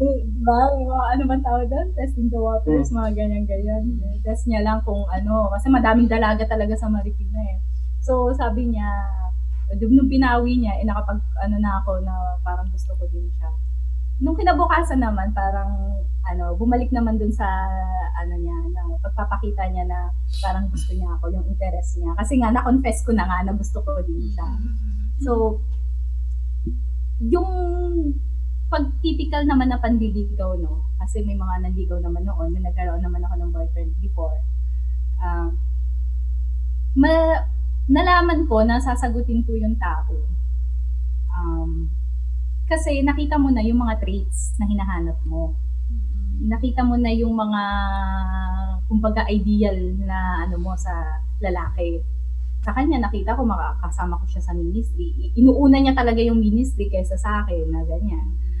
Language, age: Filipino, 20-39